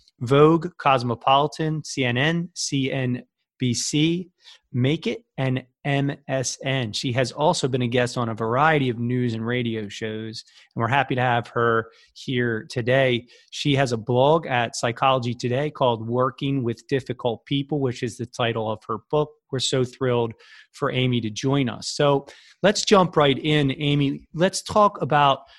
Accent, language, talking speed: American, English, 155 wpm